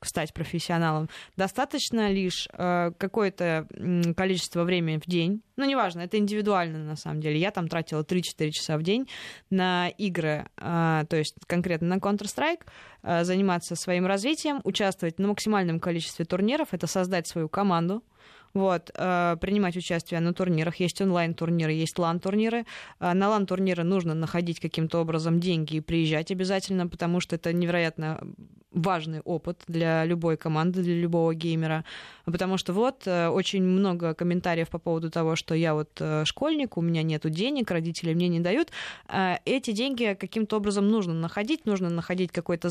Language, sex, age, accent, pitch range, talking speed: Russian, female, 20-39, native, 165-195 Hz, 145 wpm